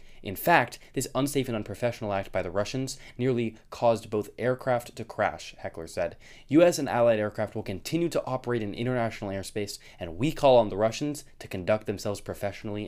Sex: male